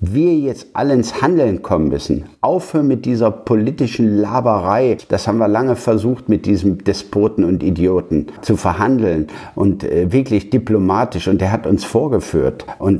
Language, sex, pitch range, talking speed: German, male, 95-115 Hz, 150 wpm